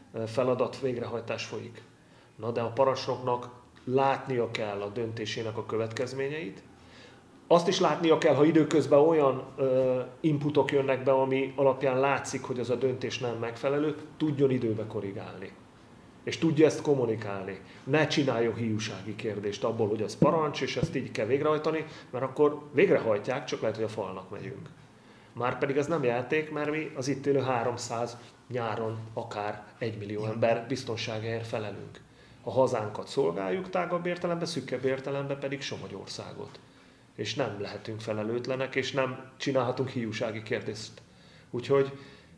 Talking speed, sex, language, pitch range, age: 140 wpm, male, Hungarian, 110-140 Hz, 30-49